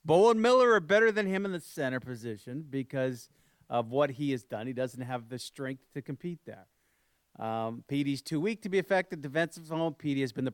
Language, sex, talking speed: English, male, 210 wpm